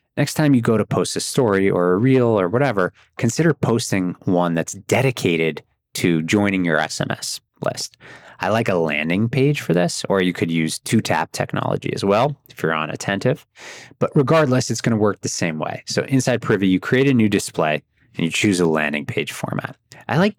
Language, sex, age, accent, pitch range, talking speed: English, male, 20-39, American, 90-130 Hz, 205 wpm